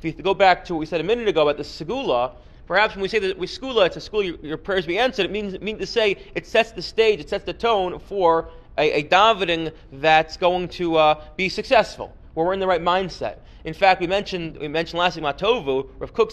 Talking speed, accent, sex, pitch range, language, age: 255 wpm, American, male, 155-200 Hz, English, 30-49